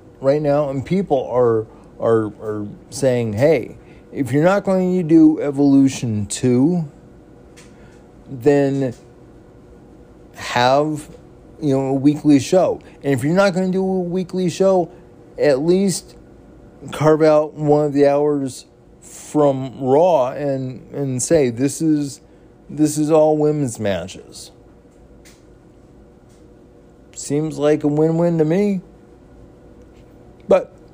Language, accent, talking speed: English, American, 120 wpm